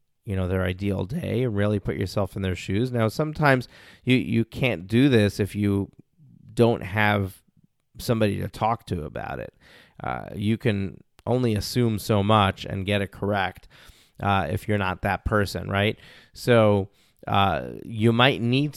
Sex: male